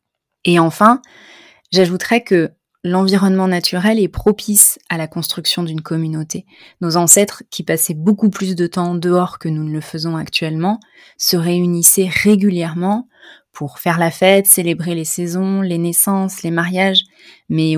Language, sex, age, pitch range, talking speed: French, female, 20-39, 170-200 Hz, 145 wpm